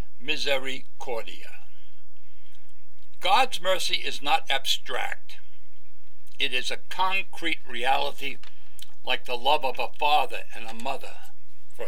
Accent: American